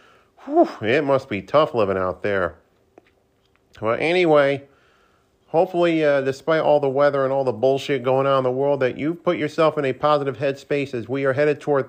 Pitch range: 125-150 Hz